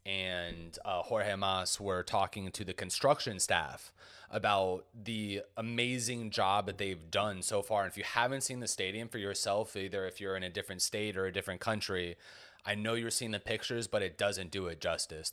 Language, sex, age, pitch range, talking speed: English, male, 30-49, 95-115 Hz, 200 wpm